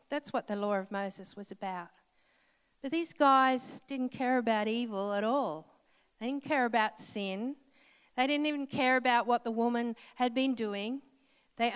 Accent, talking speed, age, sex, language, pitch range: Australian, 175 wpm, 50-69, female, English, 215-275 Hz